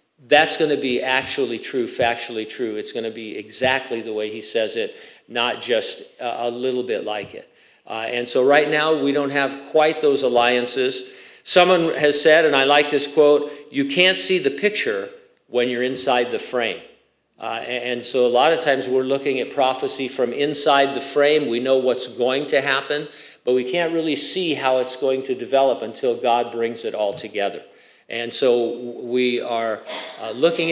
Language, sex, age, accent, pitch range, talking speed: English, male, 50-69, American, 125-160 Hz, 190 wpm